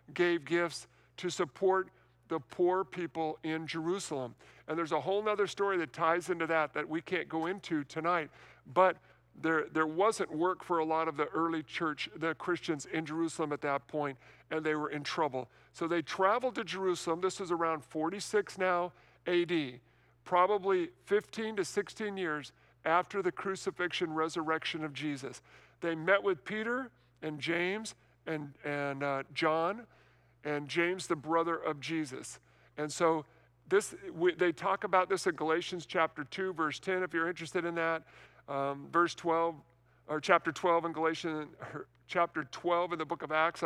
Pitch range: 155-180 Hz